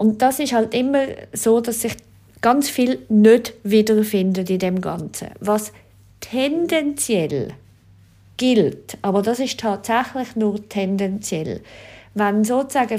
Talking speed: 120 wpm